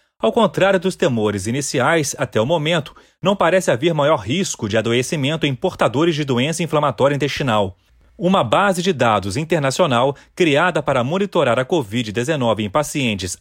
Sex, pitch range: male, 125-175 Hz